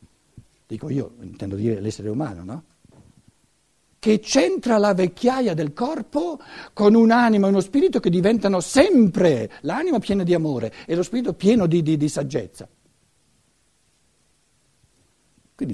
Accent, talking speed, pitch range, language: native, 130 wpm, 145-215 Hz, Italian